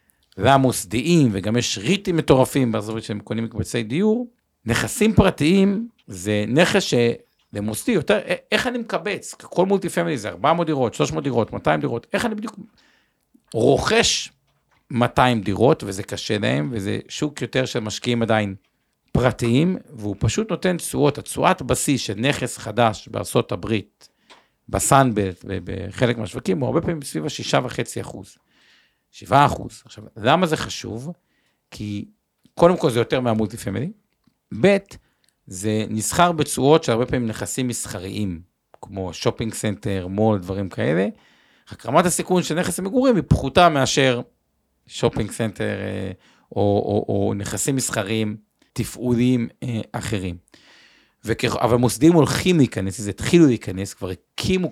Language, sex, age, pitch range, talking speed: Hebrew, male, 50-69, 105-160 Hz, 135 wpm